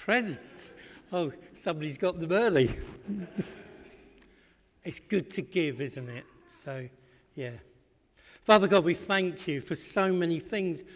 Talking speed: 125 wpm